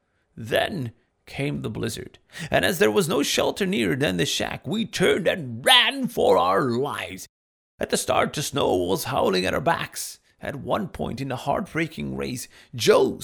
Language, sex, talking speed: English, male, 175 wpm